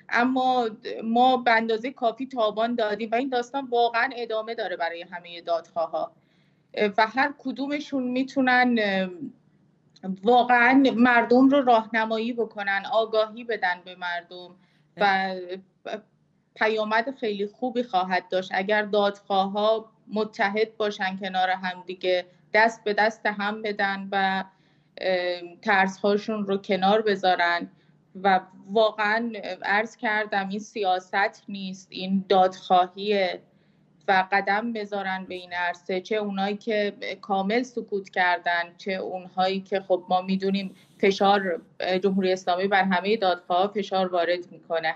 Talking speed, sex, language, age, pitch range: 120 wpm, female, English, 30-49, 180-220 Hz